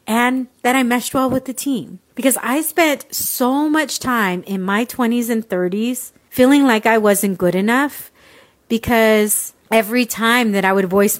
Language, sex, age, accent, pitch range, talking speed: English, female, 30-49, American, 195-255 Hz, 170 wpm